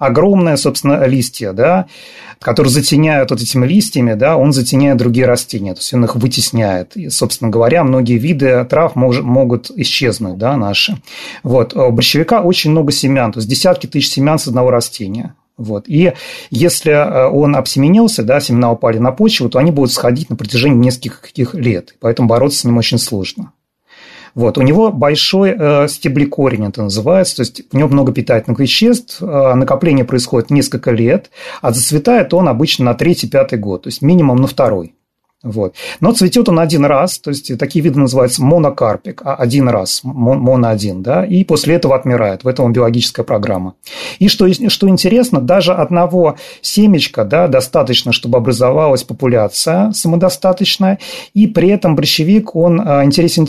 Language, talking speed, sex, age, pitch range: Russian, 160 wpm, male, 30-49, 125-170 Hz